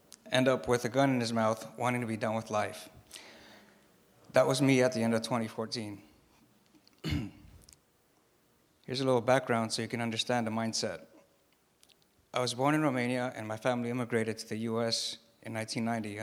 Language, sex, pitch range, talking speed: English, male, 110-130 Hz, 170 wpm